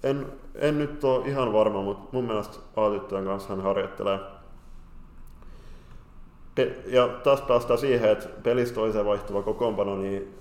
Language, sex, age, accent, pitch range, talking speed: Finnish, male, 20-39, native, 100-115 Hz, 135 wpm